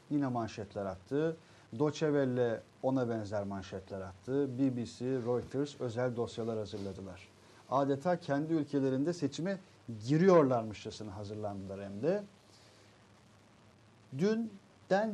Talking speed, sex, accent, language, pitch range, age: 85 wpm, male, native, Turkish, 115-170 Hz, 50-69